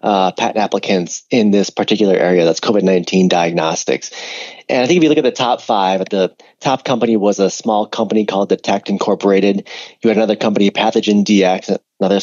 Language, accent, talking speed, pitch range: English, American, 180 wpm, 95-115 Hz